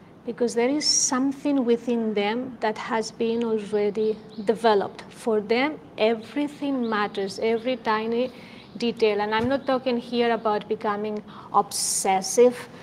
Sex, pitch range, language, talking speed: female, 205-235 Hz, English, 120 wpm